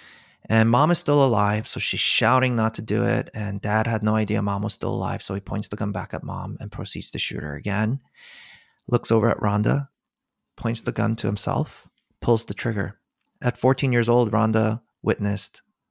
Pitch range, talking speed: 105-130 Hz, 200 wpm